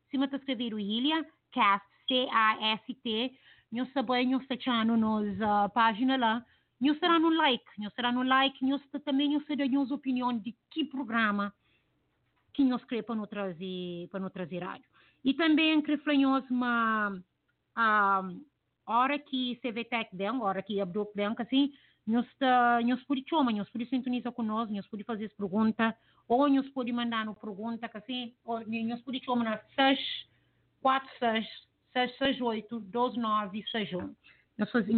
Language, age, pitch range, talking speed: English, 30-49, 215-265 Hz, 110 wpm